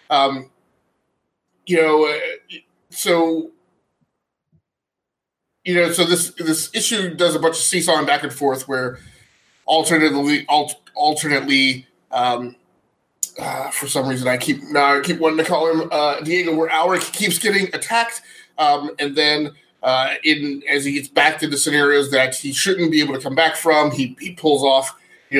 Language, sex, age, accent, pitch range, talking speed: English, male, 20-39, American, 140-175 Hz, 165 wpm